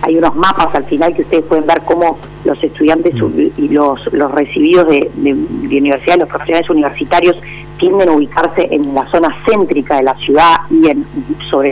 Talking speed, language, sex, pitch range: 185 wpm, Spanish, female, 155-245 Hz